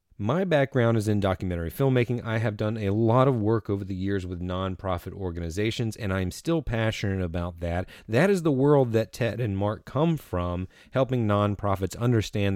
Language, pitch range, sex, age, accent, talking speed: English, 95-135 Hz, male, 30-49, American, 180 wpm